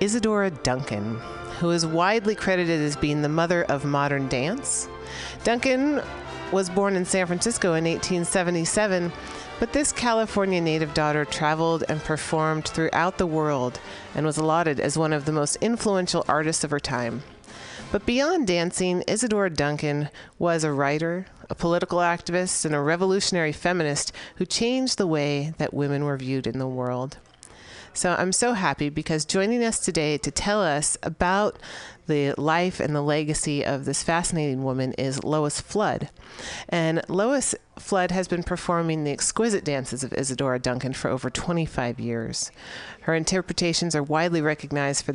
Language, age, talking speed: English, 40-59, 155 wpm